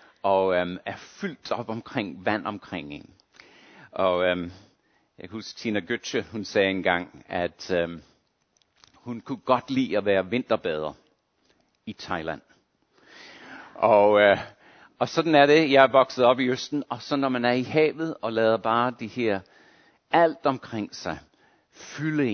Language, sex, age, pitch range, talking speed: Danish, male, 60-79, 100-140 Hz, 145 wpm